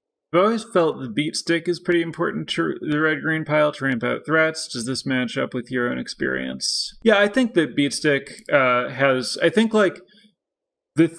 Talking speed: 205 wpm